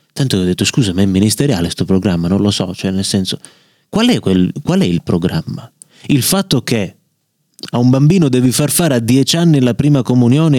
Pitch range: 105-160 Hz